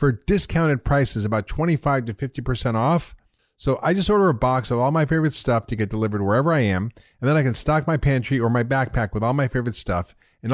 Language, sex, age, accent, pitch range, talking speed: English, male, 40-59, American, 100-130 Hz, 235 wpm